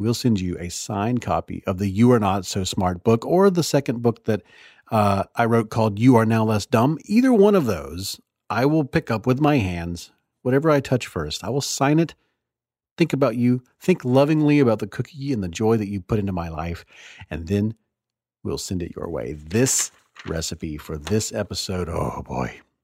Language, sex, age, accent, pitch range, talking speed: English, male, 40-59, American, 100-135 Hz, 205 wpm